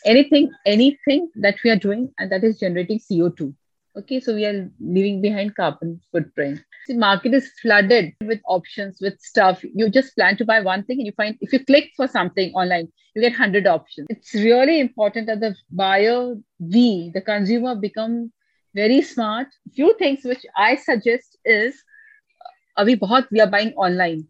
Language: English